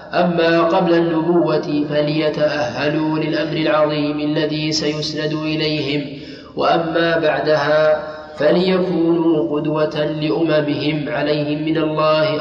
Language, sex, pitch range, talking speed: Arabic, male, 150-160 Hz, 80 wpm